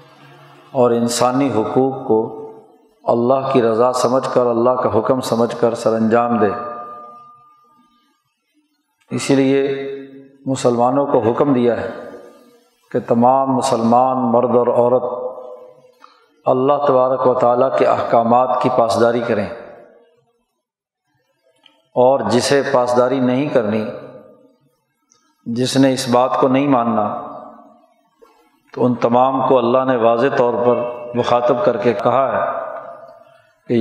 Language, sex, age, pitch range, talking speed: Urdu, male, 50-69, 120-135 Hz, 115 wpm